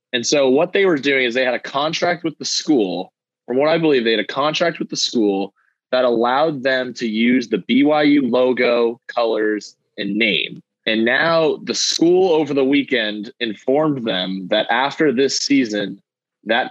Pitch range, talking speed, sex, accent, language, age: 110-130 Hz, 180 wpm, male, American, English, 20-39